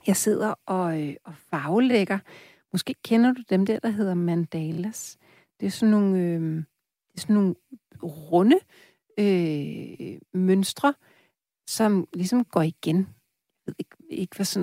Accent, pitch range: native, 175-230 Hz